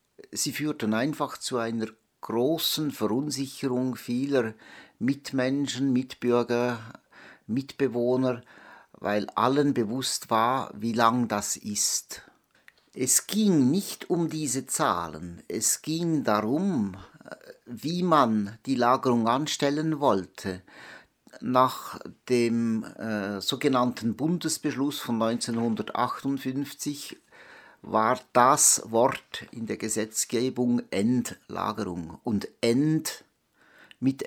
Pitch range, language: 115-145 Hz, German